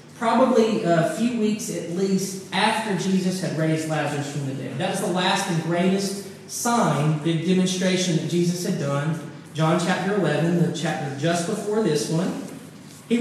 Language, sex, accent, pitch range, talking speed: English, male, American, 160-205 Hz, 165 wpm